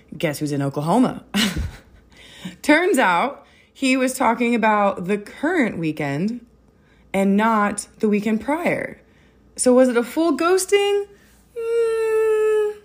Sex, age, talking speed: female, 20-39, 115 wpm